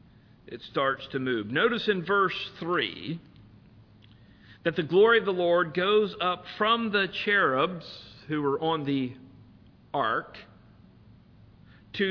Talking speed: 125 wpm